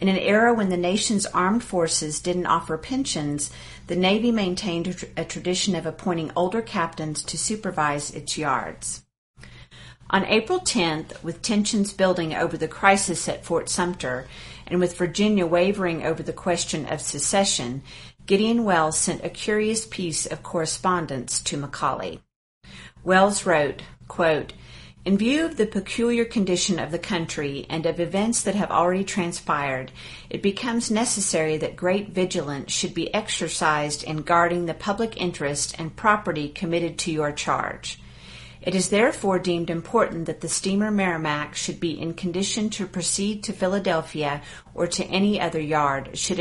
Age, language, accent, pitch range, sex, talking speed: 50-69, English, American, 160-195 Hz, female, 150 wpm